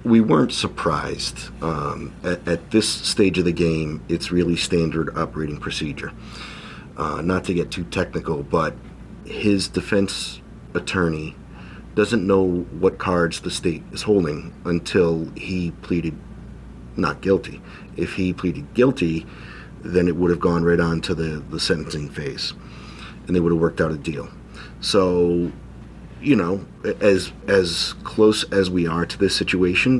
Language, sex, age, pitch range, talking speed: English, male, 40-59, 85-100 Hz, 150 wpm